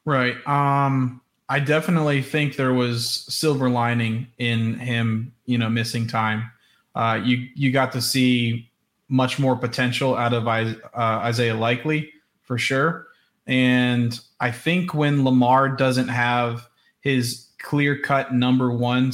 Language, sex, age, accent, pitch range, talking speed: English, male, 20-39, American, 115-135 Hz, 130 wpm